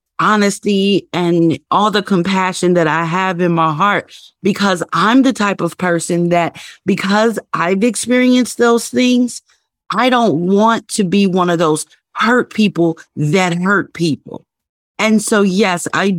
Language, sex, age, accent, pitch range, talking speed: English, female, 40-59, American, 175-220 Hz, 150 wpm